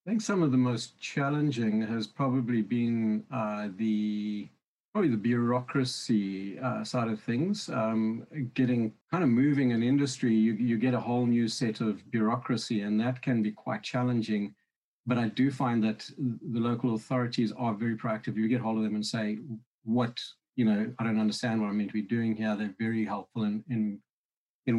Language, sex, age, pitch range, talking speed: English, male, 50-69, 110-125 Hz, 190 wpm